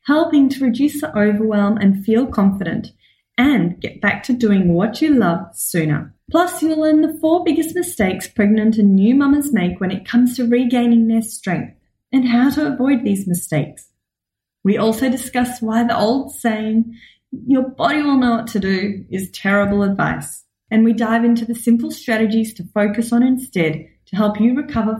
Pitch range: 195-260 Hz